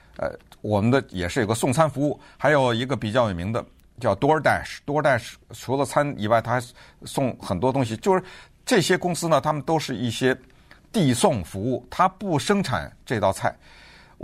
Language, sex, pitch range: Chinese, male, 110-155 Hz